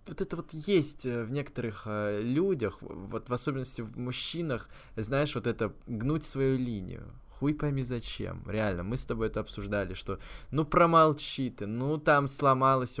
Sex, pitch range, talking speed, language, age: male, 95-120 Hz, 160 wpm, Russian, 20-39